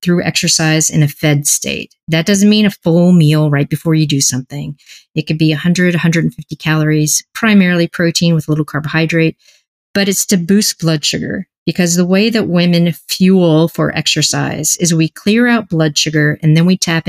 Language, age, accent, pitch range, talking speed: English, 40-59, American, 155-200 Hz, 185 wpm